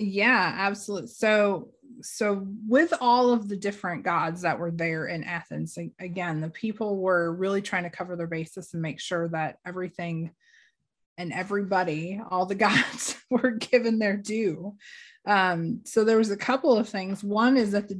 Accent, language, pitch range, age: American, English, 175-220 Hz, 30-49